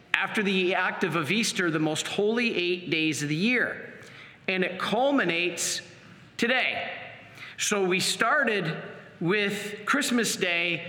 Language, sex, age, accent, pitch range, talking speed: English, male, 40-59, American, 165-210 Hz, 125 wpm